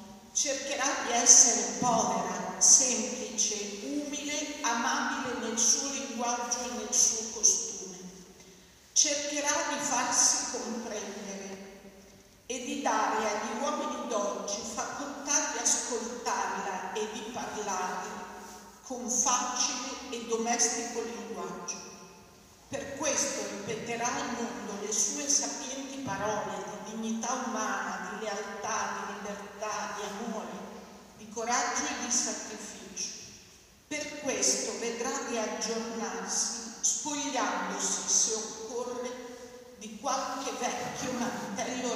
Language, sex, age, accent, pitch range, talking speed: Italian, female, 50-69, native, 210-255 Hz, 95 wpm